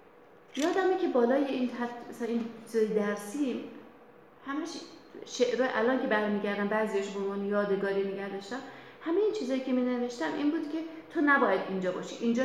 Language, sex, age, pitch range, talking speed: Persian, female, 30-49, 205-305 Hz, 145 wpm